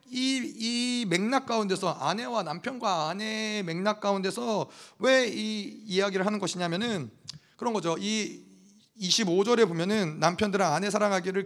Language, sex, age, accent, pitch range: Korean, male, 30-49, native, 180-235 Hz